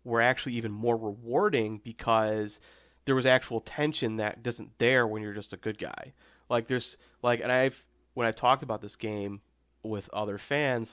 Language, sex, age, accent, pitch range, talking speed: English, male, 30-49, American, 100-115 Hz, 190 wpm